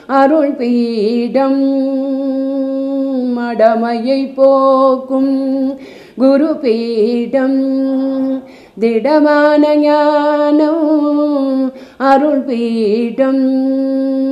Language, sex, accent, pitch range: Tamil, female, native, 225-310 Hz